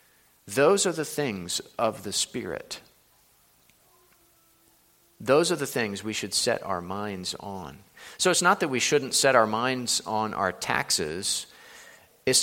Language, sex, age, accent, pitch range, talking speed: English, male, 40-59, American, 110-145 Hz, 145 wpm